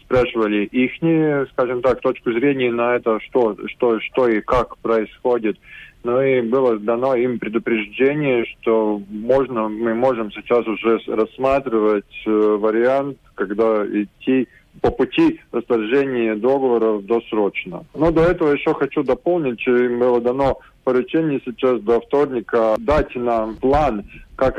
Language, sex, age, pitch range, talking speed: Russian, male, 20-39, 115-135 Hz, 130 wpm